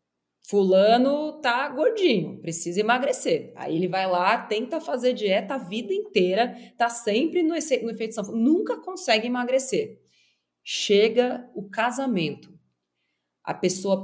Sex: female